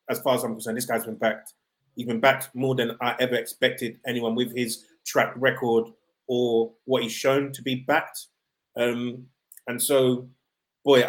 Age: 30-49